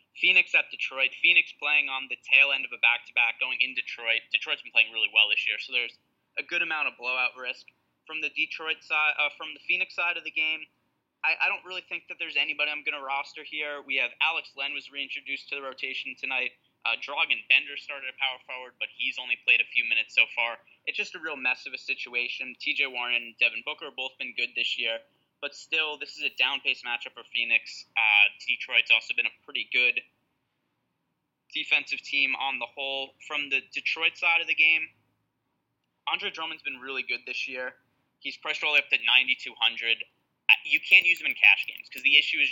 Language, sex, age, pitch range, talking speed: English, male, 20-39, 125-155 Hz, 215 wpm